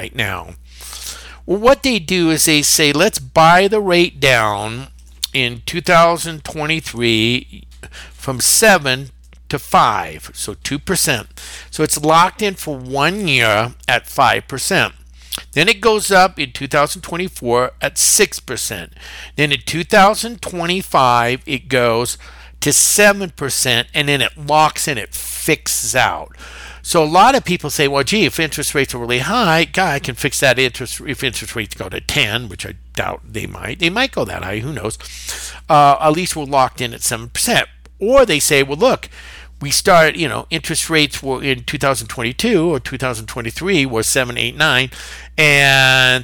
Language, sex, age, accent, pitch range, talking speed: English, male, 50-69, American, 120-160 Hz, 160 wpm